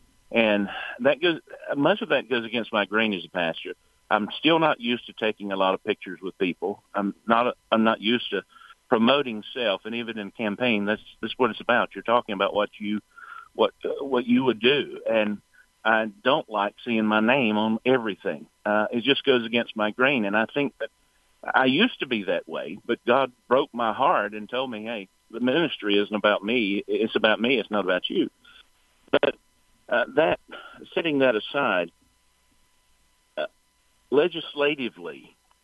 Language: English